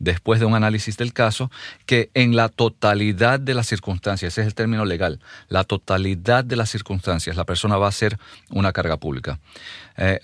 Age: 40-59